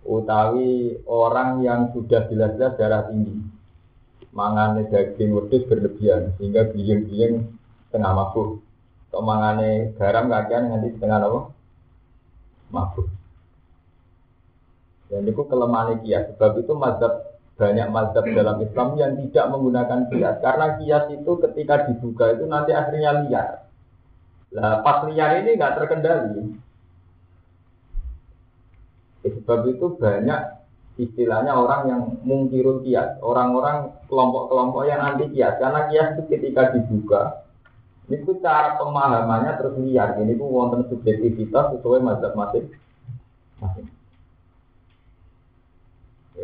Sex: male